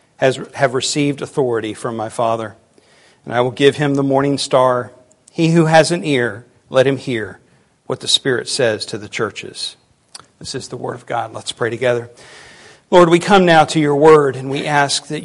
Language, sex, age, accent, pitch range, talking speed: English, male, 50-69, American, 130-150 Hz, 195 wpm